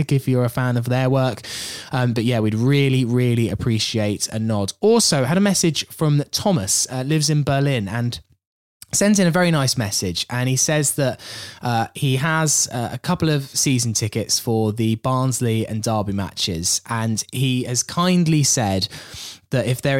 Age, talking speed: 10-29, 180 wpm